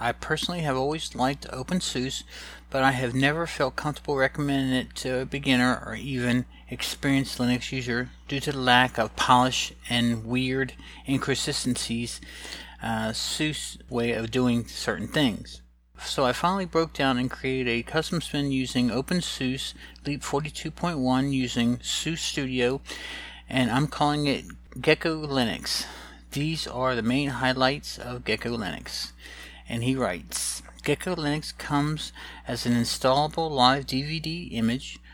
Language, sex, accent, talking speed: English, male, American, 140 wpm